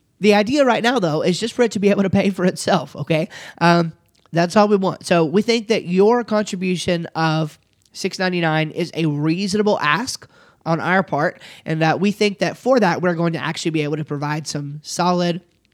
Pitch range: 155-190 Hz